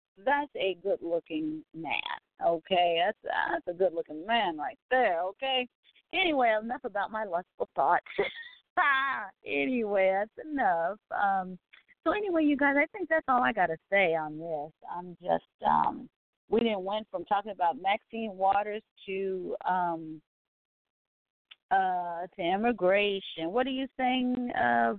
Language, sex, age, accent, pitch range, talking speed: English, female, 40-59, American, 180-255 Hz, 140 wpm